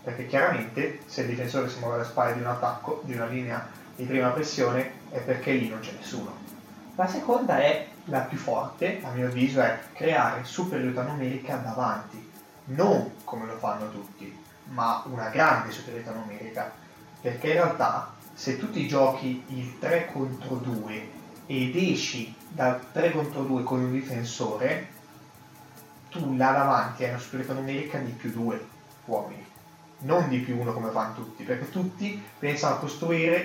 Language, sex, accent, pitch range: Italian, male, native, 125-170 Hz